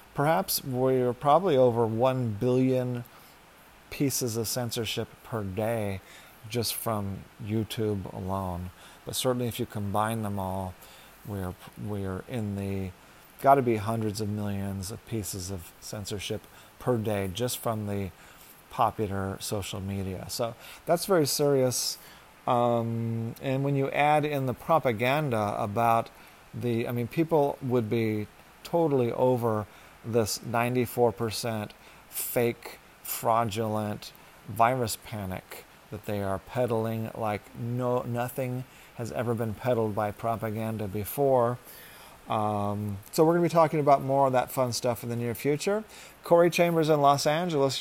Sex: male